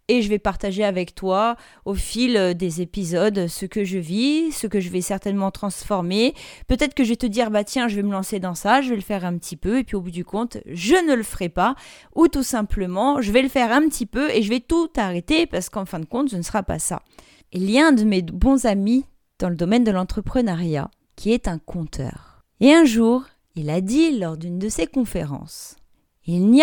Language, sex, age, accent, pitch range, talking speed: French, female, 30-49, French, 185-250 Hz, 245 wpm